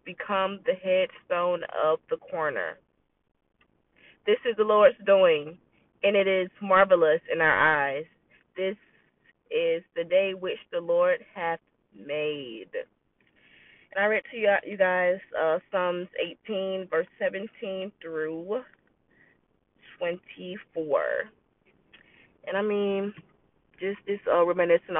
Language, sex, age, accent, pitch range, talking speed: English, female, 20-39, American, 170-250 Hz, 115 wpm